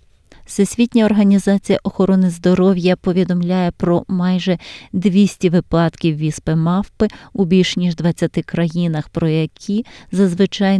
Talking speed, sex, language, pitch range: 100 wpm, female, Ukrainian, 165-195 Hz